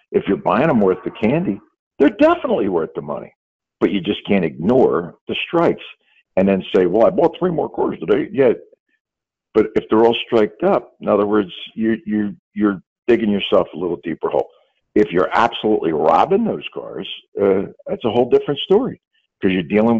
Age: 60-79